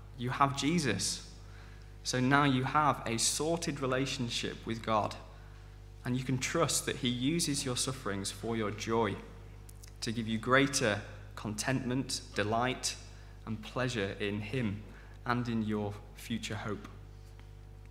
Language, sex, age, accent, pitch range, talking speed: English, male, 20-39, British, 105-125 Hz, 130 wpm